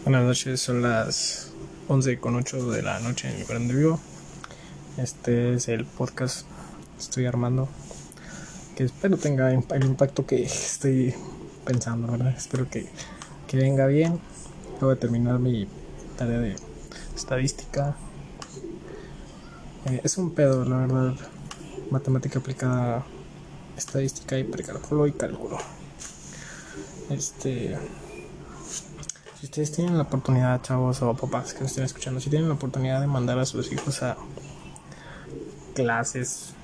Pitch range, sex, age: 130-150 Hz, male, 20-39